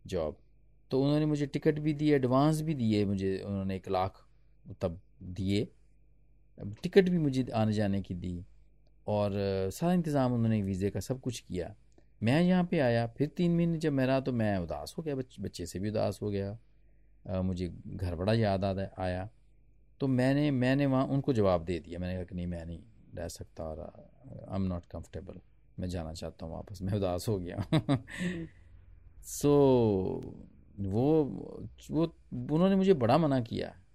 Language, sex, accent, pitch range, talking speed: Hindi, male, native, 95-135 Hz, 170 wpm